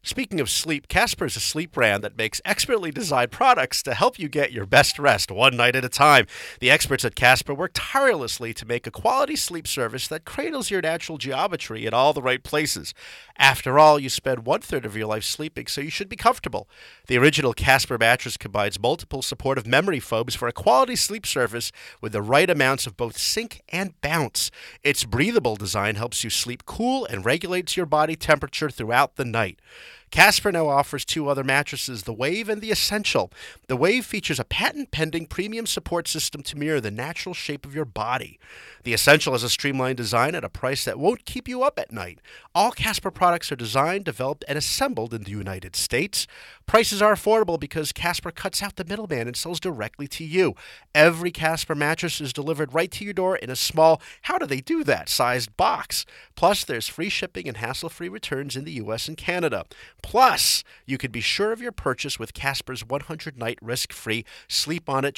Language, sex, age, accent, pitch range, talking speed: English, male, 40-59, American, 125-170 Hz, 190 wpm